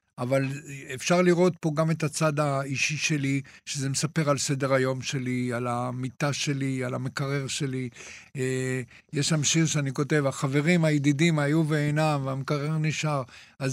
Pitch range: 135-165 Hz